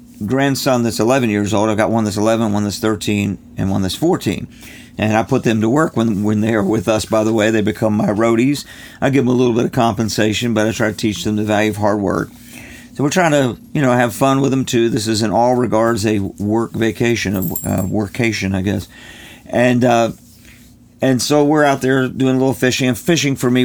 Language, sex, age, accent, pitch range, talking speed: English, male, 50-69, American, 105-125 Hz, 235 wpm